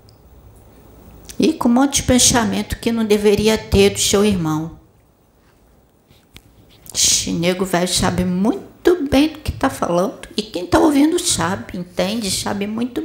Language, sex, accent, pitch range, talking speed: Portuguese, female, Brazilian, 170-250 Hz, 145 wpm